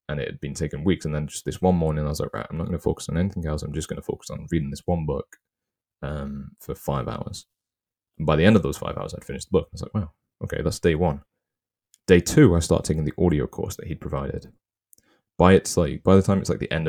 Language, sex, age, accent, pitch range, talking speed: English, male, 20-39, British, 75-90 Hz, 275 wpm